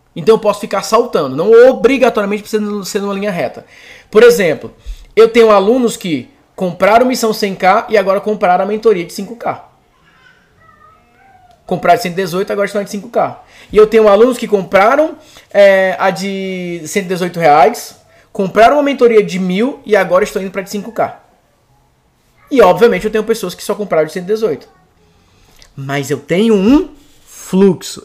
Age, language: 20-39, Portuguese